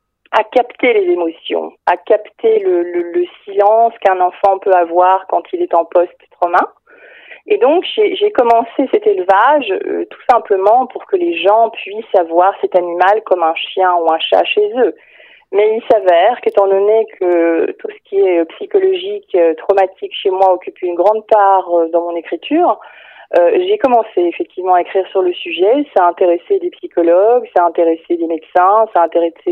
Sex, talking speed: female, 180 wpm